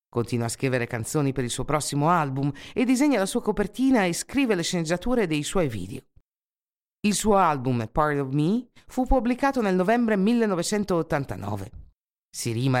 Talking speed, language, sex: 155 wpm, Italian, female